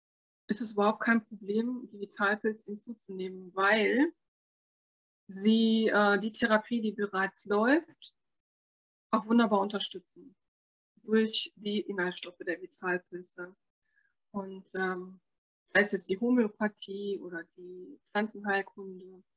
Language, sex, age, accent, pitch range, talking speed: German, female, 20-39, German, 185-225 Hz, 105 wpm